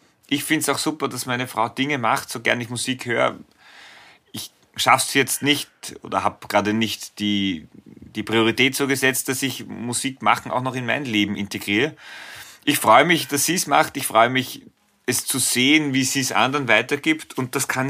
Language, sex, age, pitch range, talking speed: German, male, 30-49, 100-130 Hz, 200 wpm